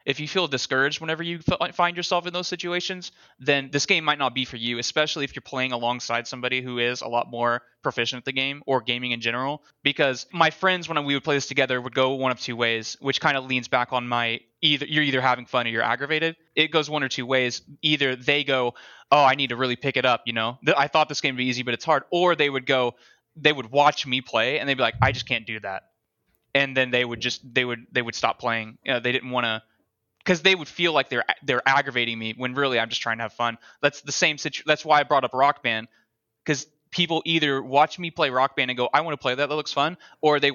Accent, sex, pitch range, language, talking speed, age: American, male, 120-145 Hz, English, 265 wpm, 20-39